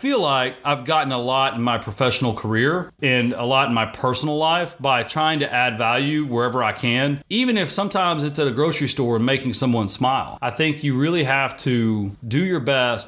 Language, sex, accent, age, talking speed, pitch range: English, male, American, 30-49, 210 wpm, 135-185 Hz